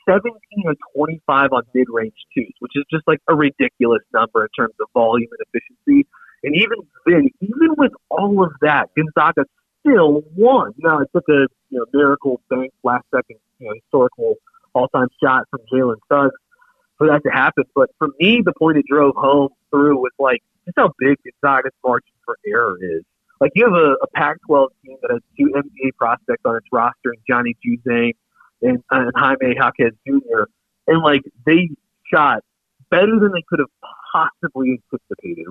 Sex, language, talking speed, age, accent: male, English, 180 wpm, 40-59, American